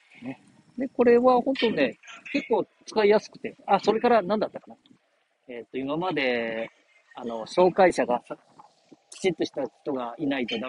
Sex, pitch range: male, 210-320 Hz